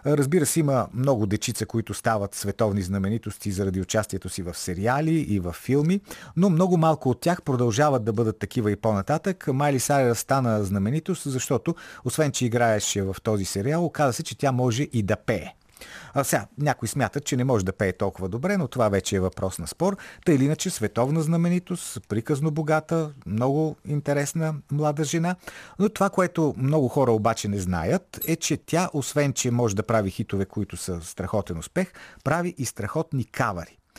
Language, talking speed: Bulgarian, 175 wpm